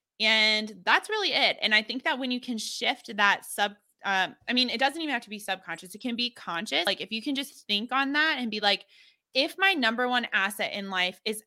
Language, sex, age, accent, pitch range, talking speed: English, female, 20-39, American, 195-245 Hz, 245 wpm